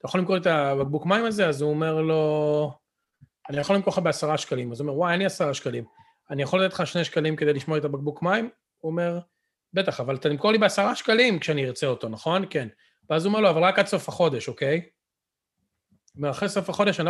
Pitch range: 135-175 Hz